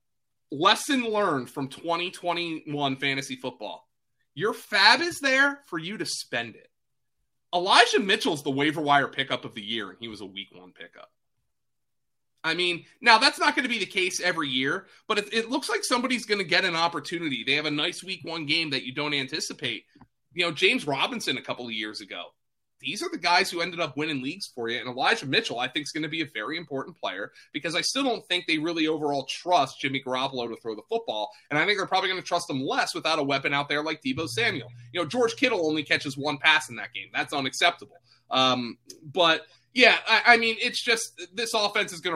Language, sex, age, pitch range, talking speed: English, male, 30-49, 135-190 Hz, 220 wpm